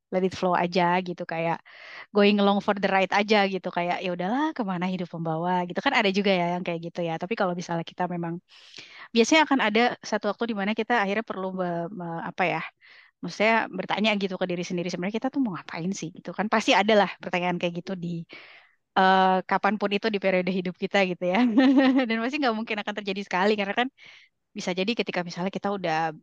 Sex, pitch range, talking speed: female, 175-210 Hz, 200 wpm